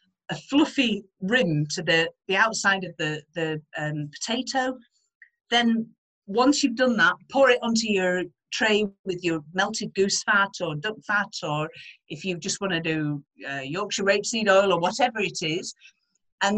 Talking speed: 165 wpm